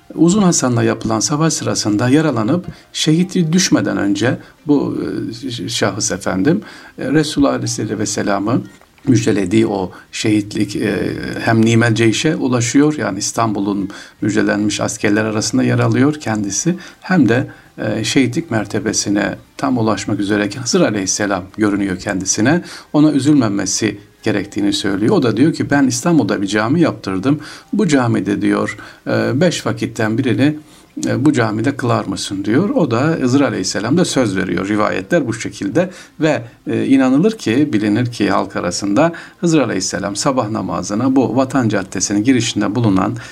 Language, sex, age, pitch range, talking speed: Turkish, male, 50-69, 105-150 Hz, 120 wpm